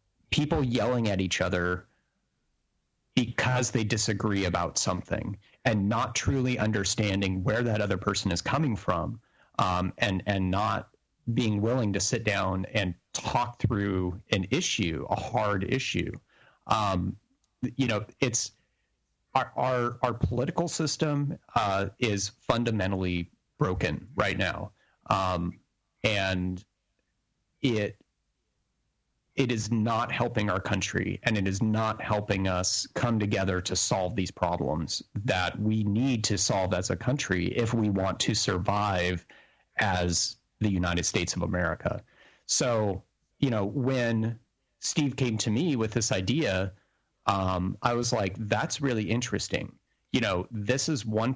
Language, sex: English, male